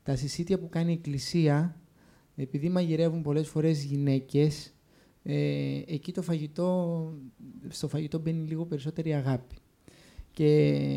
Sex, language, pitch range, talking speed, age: male, Greek, 125-165 Hz, 105 wpm, 20-39